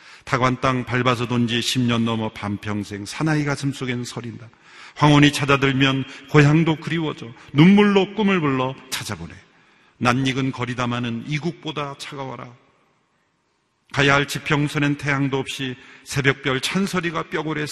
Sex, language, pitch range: male, Korean, 125-195 Hz